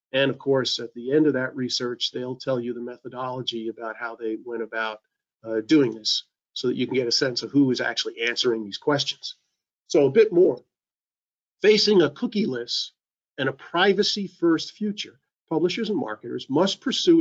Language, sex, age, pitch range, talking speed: English, male, 50-69, 120-155 Hz, 190 wpm